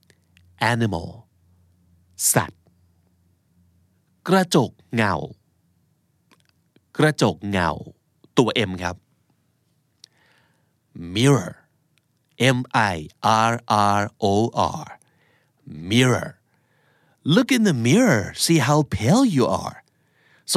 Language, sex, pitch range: Thai, male, 105-150 Hz